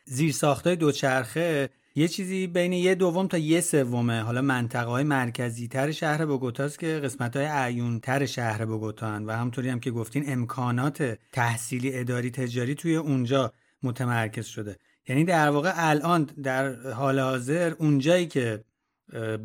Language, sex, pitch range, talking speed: Persian, male, 125-165 Hz, 145 wpm